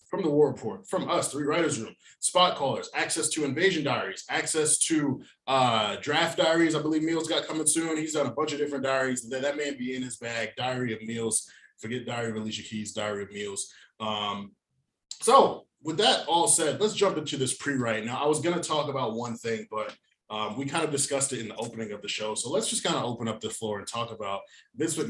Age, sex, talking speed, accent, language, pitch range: 20-39, male, 230 wpm, American, English, 110-145 Hz